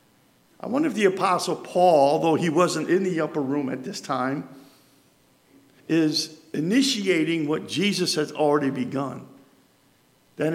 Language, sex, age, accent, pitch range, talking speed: English, male, 50-69, American, 150-205 Hz, 135 wpm